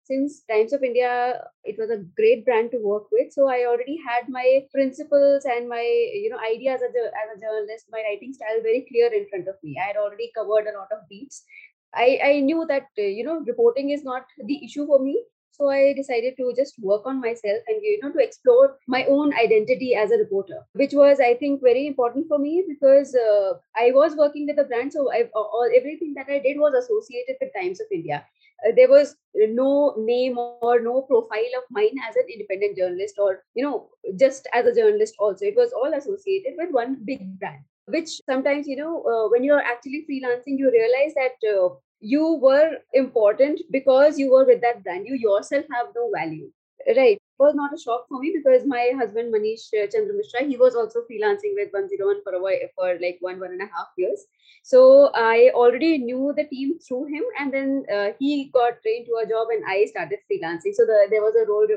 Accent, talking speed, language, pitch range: native, 215 wpm, Hindi, 235-325 Hz